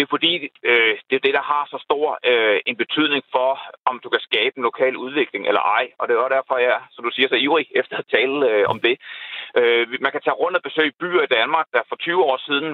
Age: 30-49